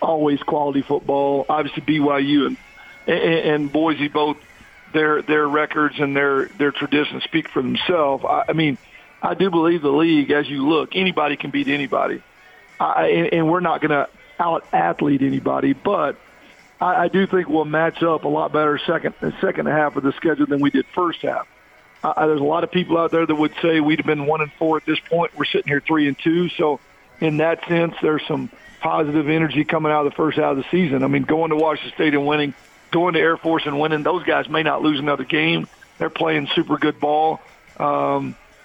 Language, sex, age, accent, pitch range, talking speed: English, male, 50-69, American, 145-165 Hz, 215 wpm